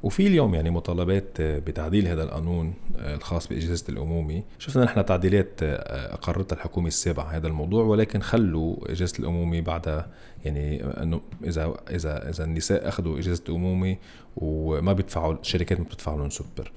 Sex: male